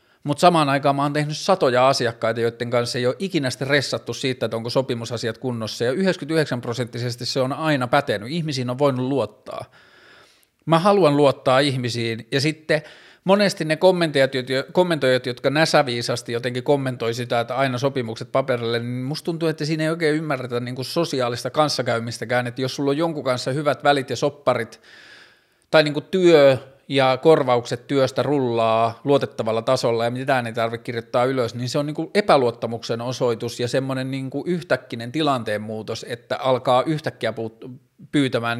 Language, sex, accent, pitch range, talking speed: Finnish, male, native, 120-145 Hz, 155 wpm